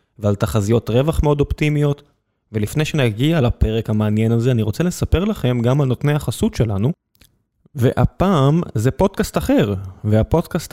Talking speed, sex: 135 wpm, male